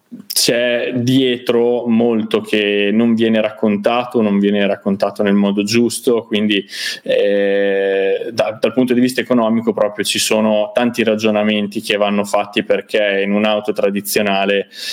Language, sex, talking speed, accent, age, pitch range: Italian, male, 135 wpm, native, 20-39, 100-125 Hz